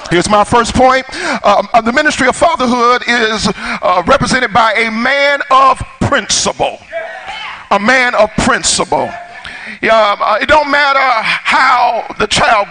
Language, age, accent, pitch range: English, 40-59, American, 250-300 Hz